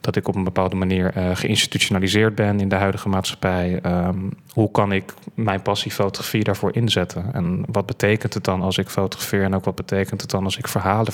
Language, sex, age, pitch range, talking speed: Dutch, male, 20-39, 100-115 Hz, 200 wpm